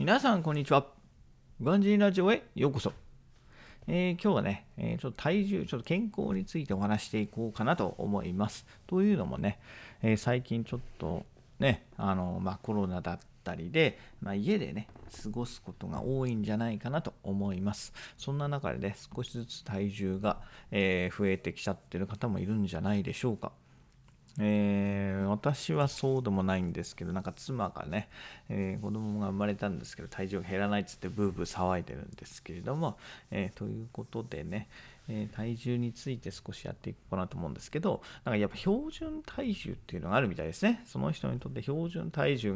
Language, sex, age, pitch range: Japanese, male, 40-59, 100-135 Hz